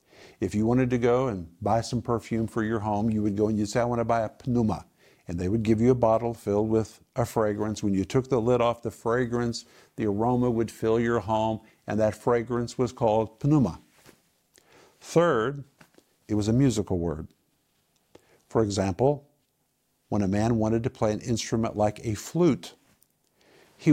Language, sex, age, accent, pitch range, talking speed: English, male, 50-69, American, 105-130 Hz, 190 wpm